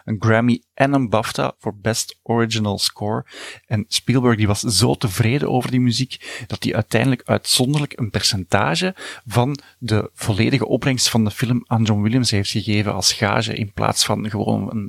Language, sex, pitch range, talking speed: Dutch, male, 105-125 Hz, 175 wpm